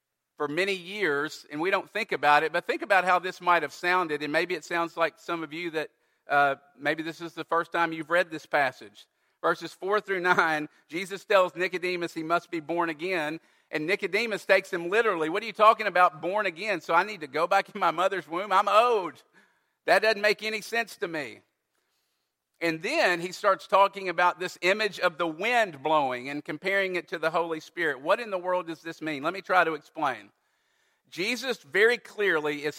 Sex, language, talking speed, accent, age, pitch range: male, English, 210 wpm, American, 50-69, 160-200 Hz